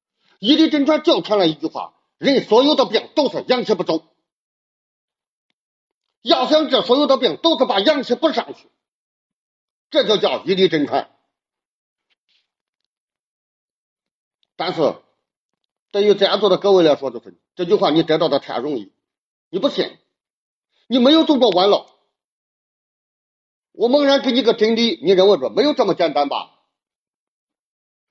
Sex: male